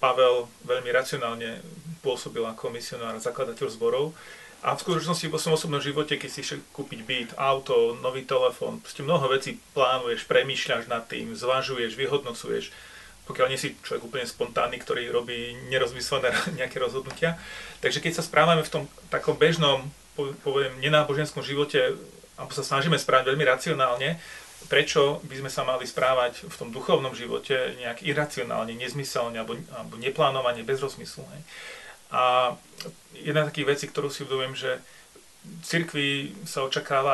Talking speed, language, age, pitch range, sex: 150 wpm, Slovak, 30-49, 130-170 Hz, male